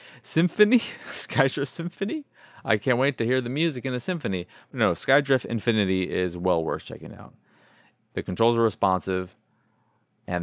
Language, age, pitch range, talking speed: English, 20-39, 95-125 Hz, 150 wpm